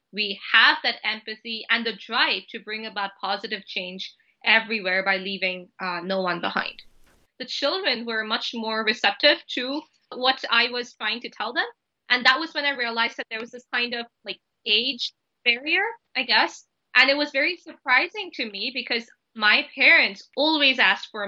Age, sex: 20-39, female